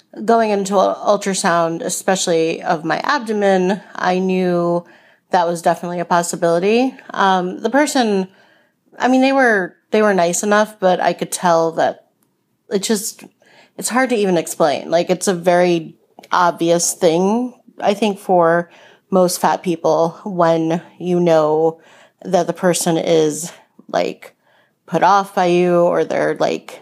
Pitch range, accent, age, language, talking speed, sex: 170-210 Hz, American, 30-49, English, 145 wpm, female